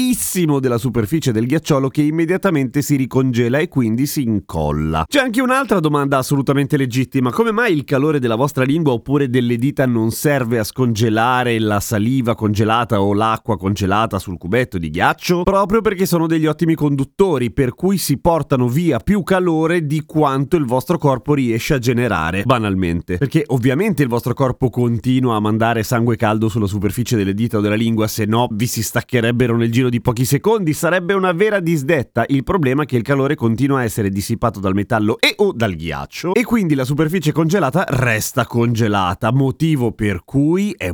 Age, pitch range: 30-49, 105-150 Hz